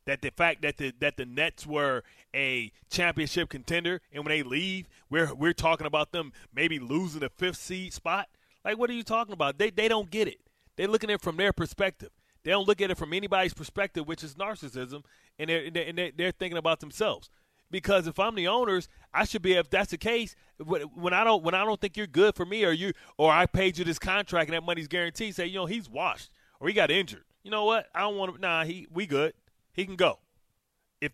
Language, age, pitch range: English, 30-49, 155-195 Hz